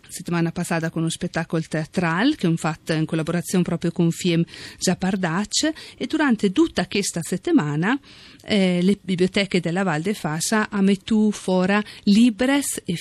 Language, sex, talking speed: Italian, female, 145 wpm